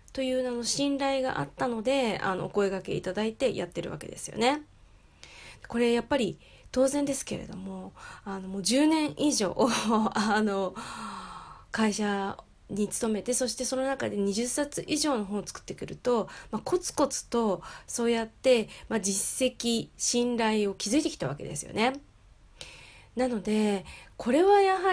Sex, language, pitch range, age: female, Japanese, 200-275 Hz, 20-39